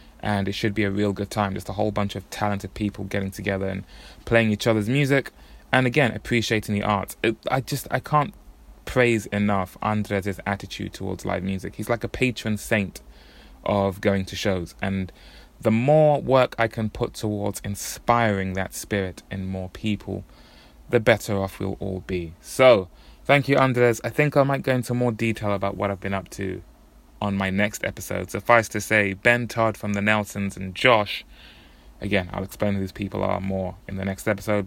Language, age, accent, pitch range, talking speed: English, 20-39, British, 95-115 Hz, 190 wpm